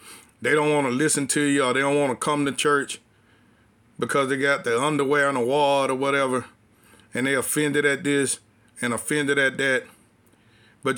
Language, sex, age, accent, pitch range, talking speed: English, male, 40-59, American, 135-190 Hz, 190 wpm